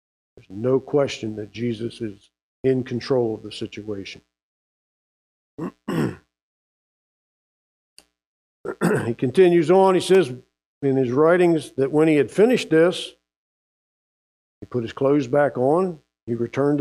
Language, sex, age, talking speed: English, male, 50-69, 120 wpm